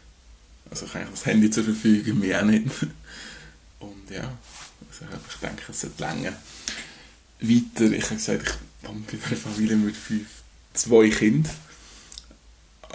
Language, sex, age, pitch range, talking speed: German, male, 20-39, 100-130 Hz, 145 wpm